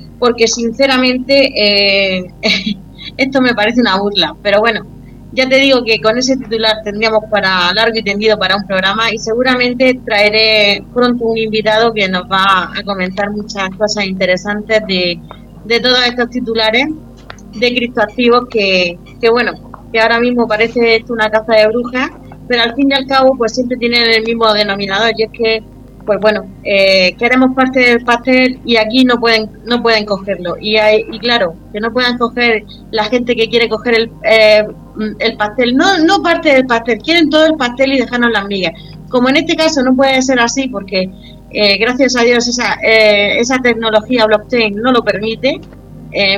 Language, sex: Spanish, female